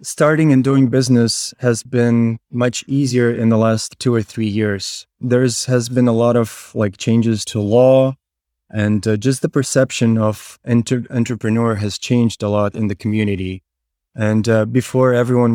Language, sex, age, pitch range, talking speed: English, male, 20-39, 110-125 Hz, 170 wpm